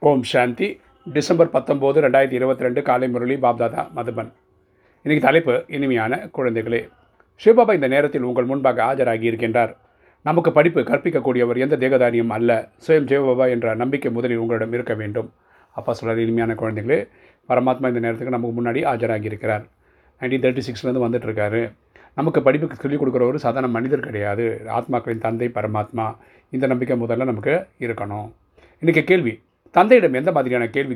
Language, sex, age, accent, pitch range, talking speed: Tamil, male, 40-59, native, 115-130 Hz, 140 wpm